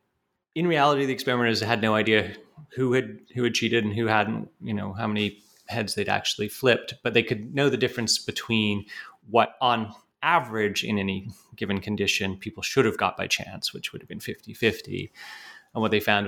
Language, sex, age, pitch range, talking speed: English, male, 30-49, 105-130 Hz, 190 wpm